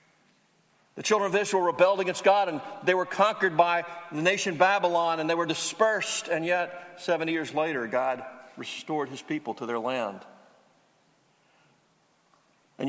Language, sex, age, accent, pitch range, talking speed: English, male, 50-69, American, 140-195 Hz, 150 wpm